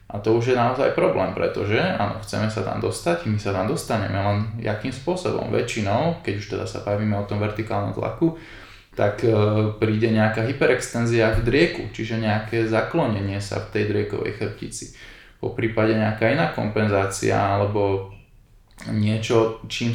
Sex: male